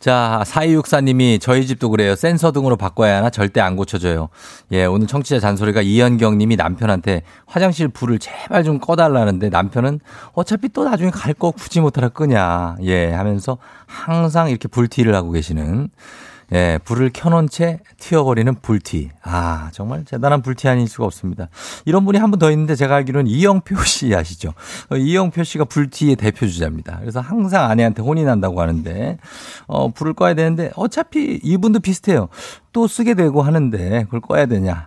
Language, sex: Korean, male